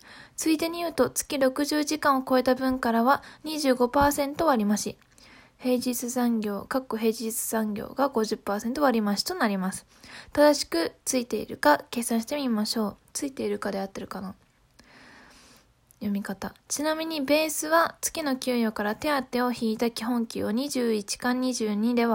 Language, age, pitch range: Japanese, 10-29, 225-275 Hz